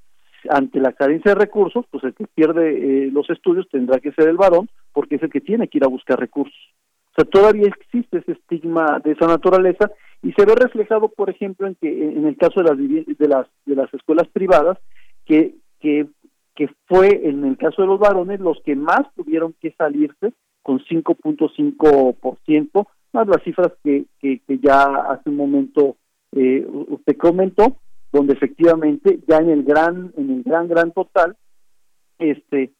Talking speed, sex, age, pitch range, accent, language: 180 wpm, male, 50-69, 140-180 Hz, Mexican, Spanish